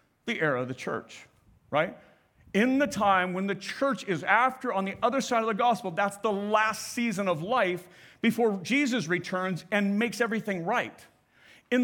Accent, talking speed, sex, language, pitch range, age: American, 175 wpm, male, English, 175-225 Hz, 40-59